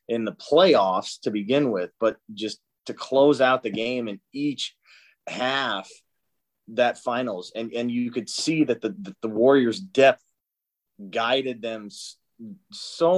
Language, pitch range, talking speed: English, 110-125 Hz, 140 wpm